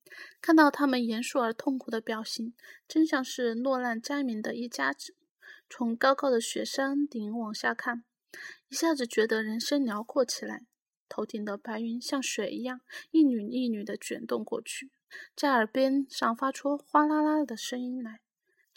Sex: female